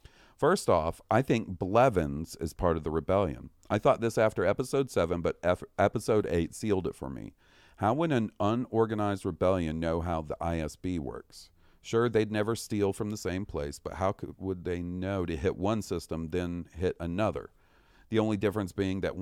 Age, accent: 40-59, American